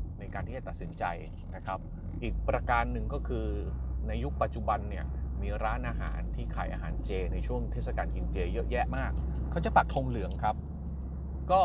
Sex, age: male, 30-49